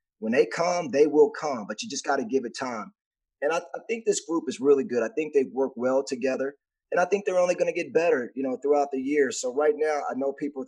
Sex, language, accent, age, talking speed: male, English, American, 30-49, 280 wpm